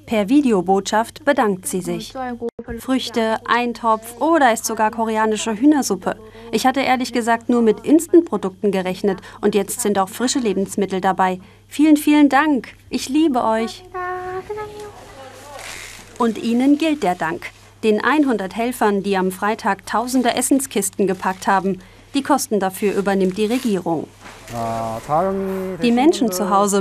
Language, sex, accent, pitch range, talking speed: German, female, German, 190-245 Hz, 130 wpm